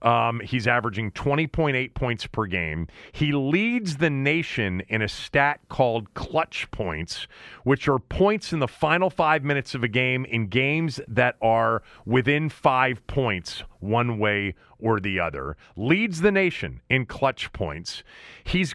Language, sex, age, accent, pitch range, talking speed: English, male, 40-59, American, 120-165 Hz, 150 wpm